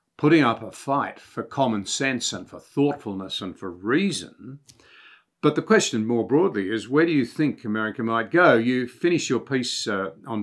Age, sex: 50-69, male